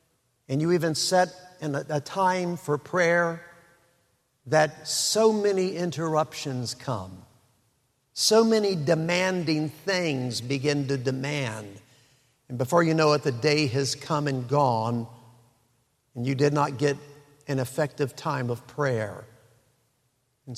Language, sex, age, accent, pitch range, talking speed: English, male, 50-69, American, 130-165 Hz, 125 wpm